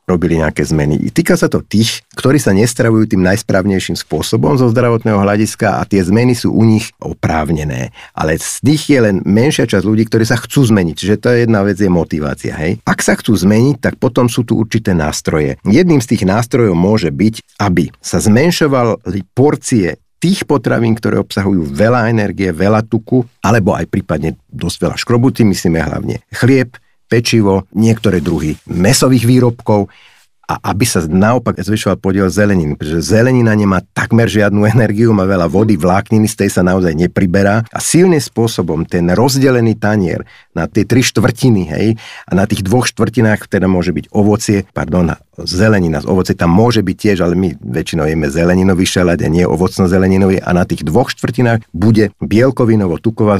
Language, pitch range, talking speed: Slovak, 90-115 Hz, 170 wpm